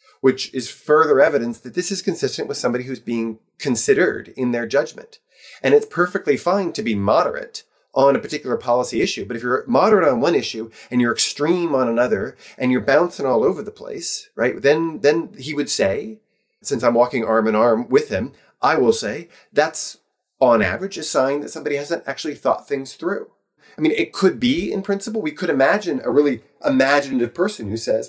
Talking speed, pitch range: 195 wpm, 125-195 Hz